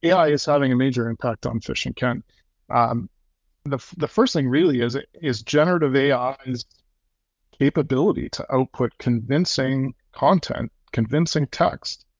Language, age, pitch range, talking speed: English, 40-59, 120-140 Hz, 135 wpm